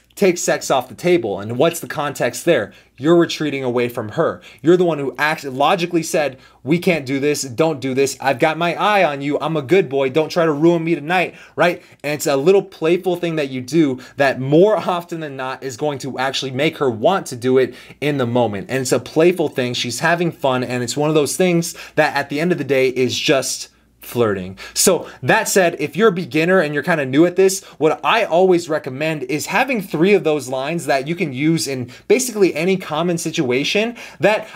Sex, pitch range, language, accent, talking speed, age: male, 135-175 Hz, English, American, 225 wpm, 30-49